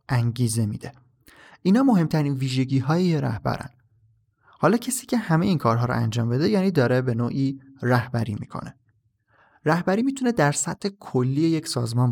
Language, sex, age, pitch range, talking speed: Persian, male, 30-49, 120-160 Hz, 145 wpm